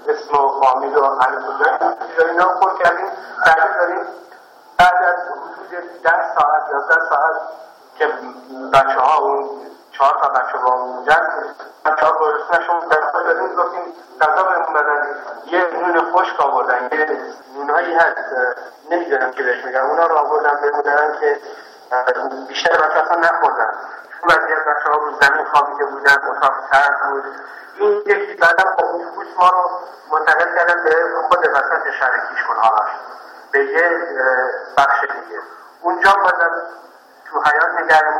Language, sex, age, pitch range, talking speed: Persian, male, 50-69, 145-175 Hz, 115 wpm